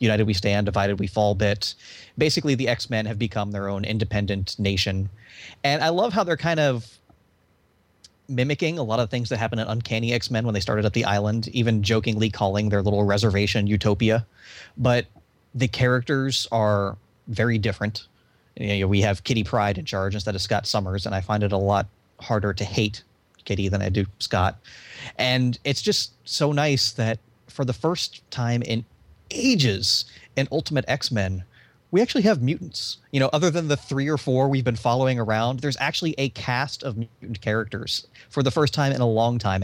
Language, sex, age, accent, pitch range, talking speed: English, male, 30-49, American, 100-125 Hz, 190 wpm